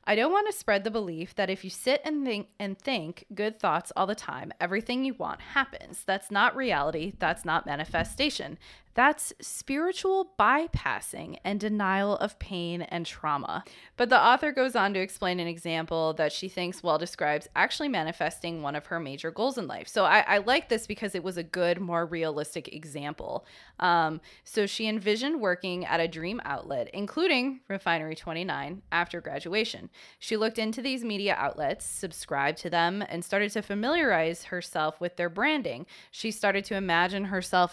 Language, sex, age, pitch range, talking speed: English, female, 20-39, 165-215 Hz, 175 wpm